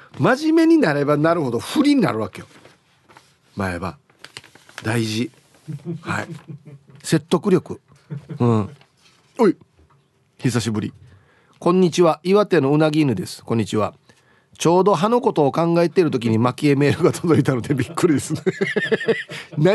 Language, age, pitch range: Japanese, 40-59, 125-165 Hz